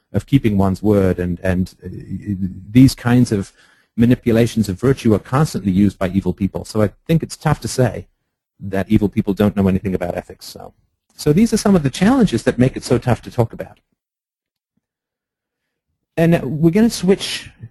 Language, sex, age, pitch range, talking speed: English, male, 40-59, 100-130 Hz, 185 wpm